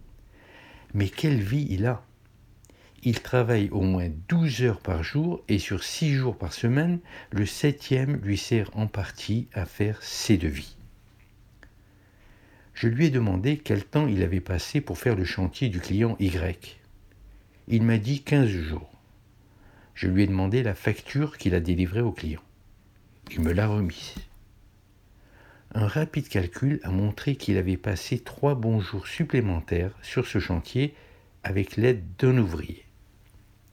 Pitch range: 95-120 Hz